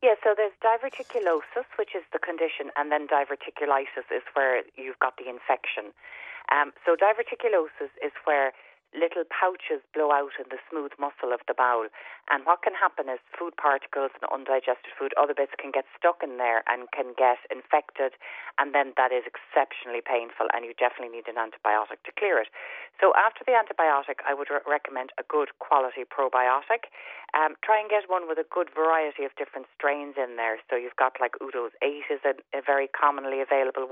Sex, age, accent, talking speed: female, 40-59, Irish, 190 wpm